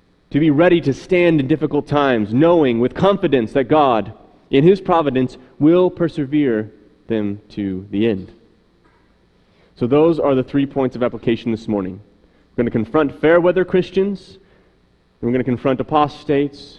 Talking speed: 155 wpm